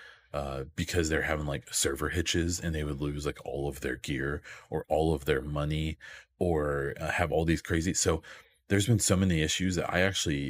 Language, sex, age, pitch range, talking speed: English, male, 30-49, 75-90 Hz, 205 wpm